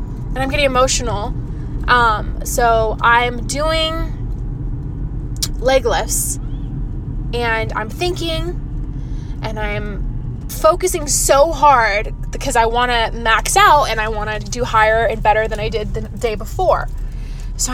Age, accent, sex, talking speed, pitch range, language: 20-39, American, female, 130 wpm, 220-330 Hz, English